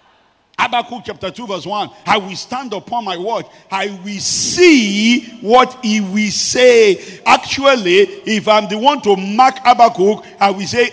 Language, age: English, 50-69